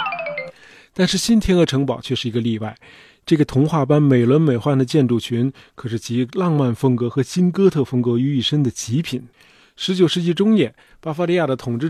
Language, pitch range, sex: Chinese, 125-165 Hz, male